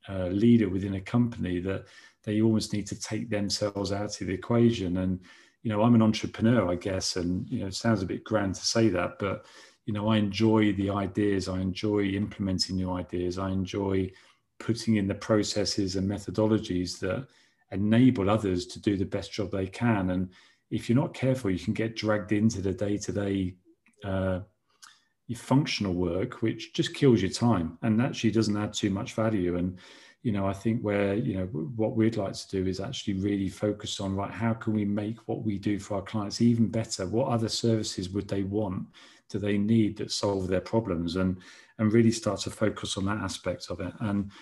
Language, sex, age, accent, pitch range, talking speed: English, male, 40-59, British, 95-110 Hz, 200 wpm